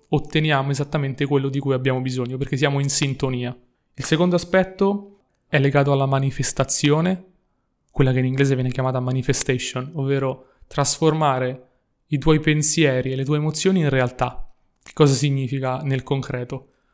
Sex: male